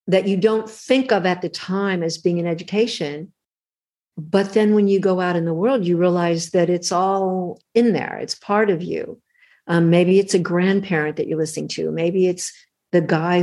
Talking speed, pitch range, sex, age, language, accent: 200 wpm, 165-210 Hz, female, 50-69, English, American